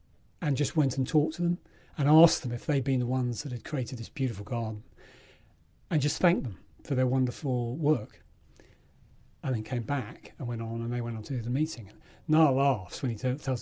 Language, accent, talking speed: English, British, 225 wpm